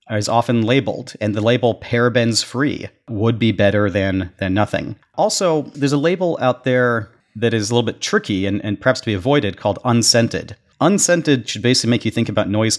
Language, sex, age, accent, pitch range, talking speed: English, male, 40-59, American, 100-125 Hz, 195 wpm